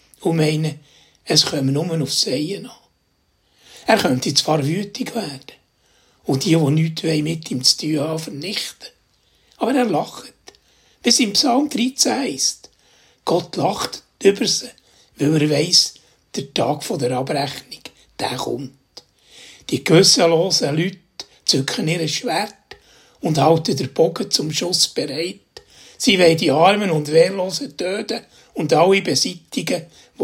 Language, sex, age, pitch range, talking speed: German, male, 60-79, 150-195 Hz, 135 wpm